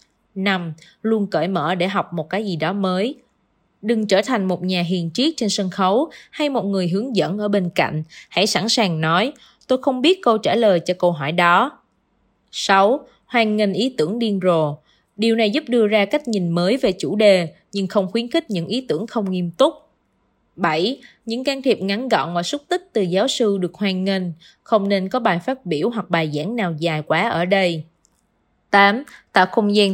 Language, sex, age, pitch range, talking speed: Vietnamese, female, 20-39, 180-230 Hz, 210 wpm